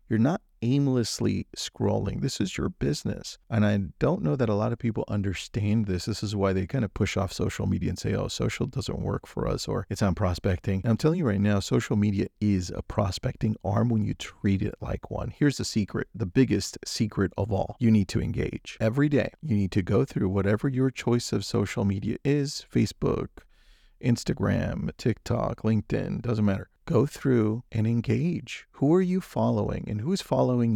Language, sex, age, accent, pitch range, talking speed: English, male, 40-59, American, 100-125 Hz, 195 wpm